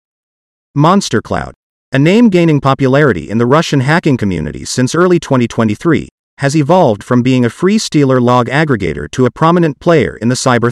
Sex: male